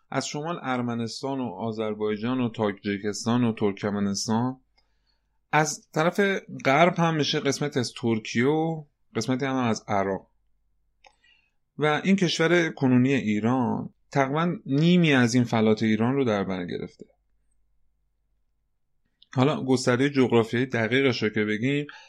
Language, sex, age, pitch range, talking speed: Persian, male, 30-49, 105-135 Hz, 115 wpm